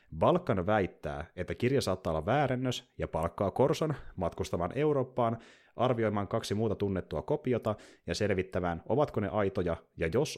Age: 30-49